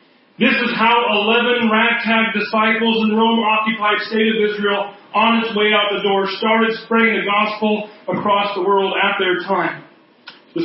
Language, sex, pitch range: English, male, 210-265 Hz